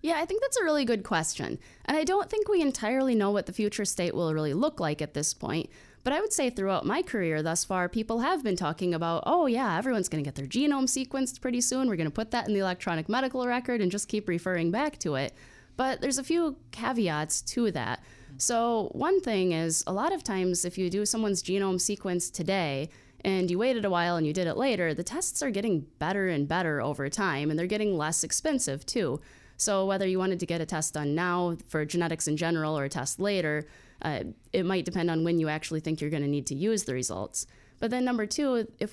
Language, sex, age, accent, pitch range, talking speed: English, female, 20-39, American, 155-230 Hz, 240 wpm